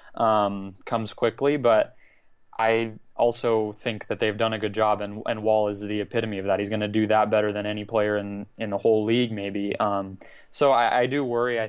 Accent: American